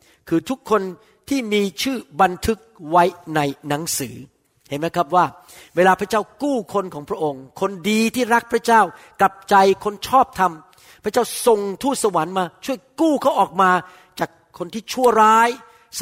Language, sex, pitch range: Thai, male, 160-220 Hz